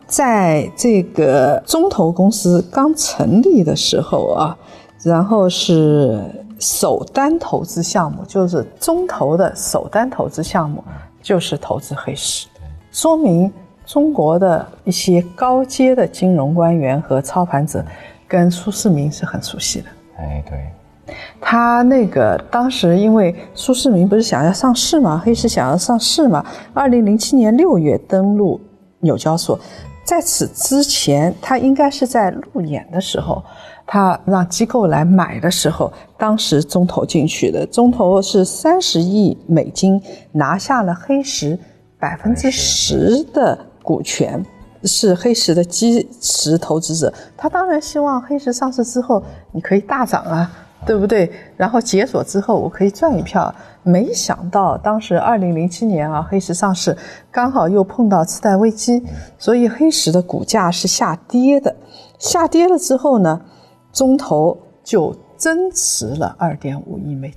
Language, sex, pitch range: Chinese, female, 170-250 Hz